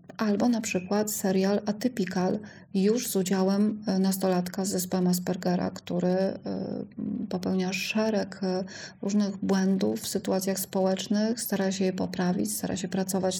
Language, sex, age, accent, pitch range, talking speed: Polish, female, 30-49, native, 185-210 Hz, 115 wpm